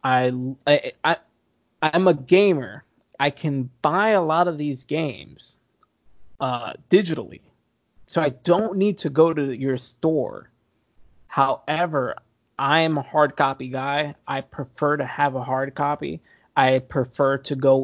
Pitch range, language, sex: 130-150 Hz, English, male